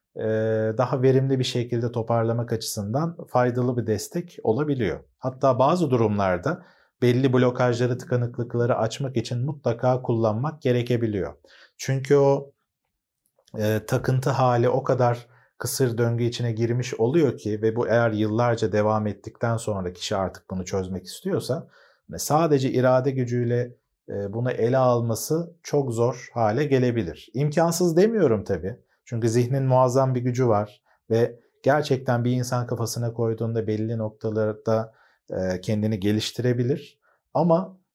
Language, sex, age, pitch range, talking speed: Turkish, male, 40-59, 110-140 Hz, 120 wpm